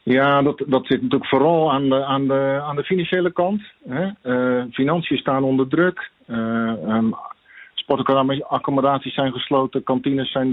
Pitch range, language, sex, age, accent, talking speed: 115-135 Hz, Dutch, male, 40-59, Dutch, 160 wpm